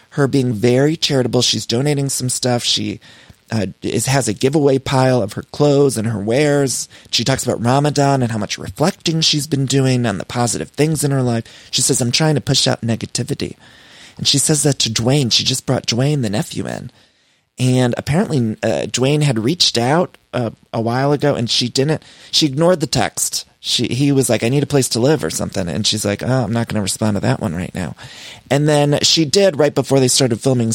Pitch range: 110-140 Hz